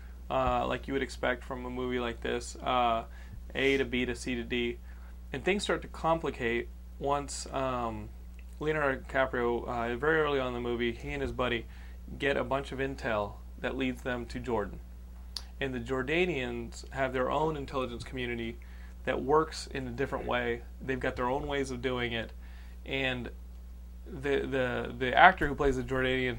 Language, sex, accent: English, male, American